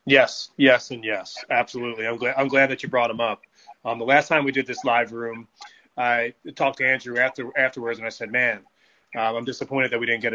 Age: 30-49